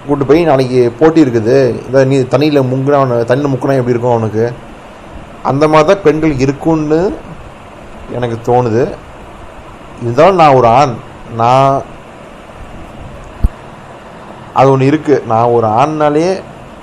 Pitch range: 115-140 Hz